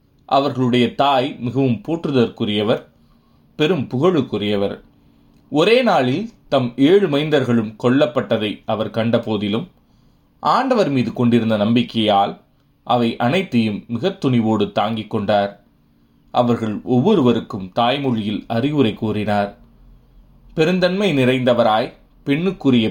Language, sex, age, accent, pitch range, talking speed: Tamil, male, 30-49, native, 110-135 Hz, 85 wpm